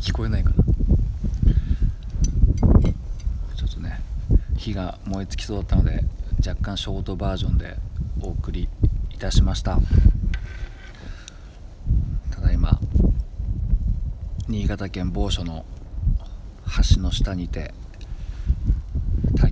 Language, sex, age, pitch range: Japanese, male, 40-59, 80-95 Hz